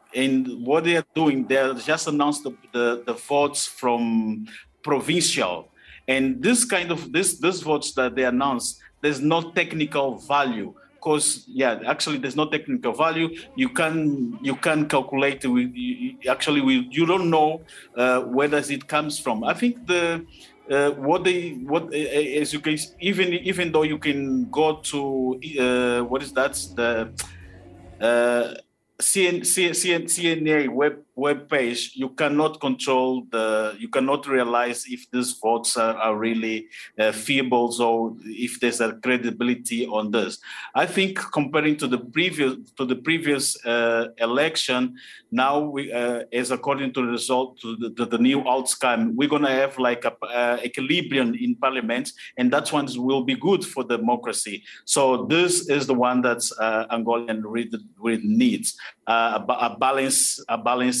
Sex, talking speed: male, 160 wpm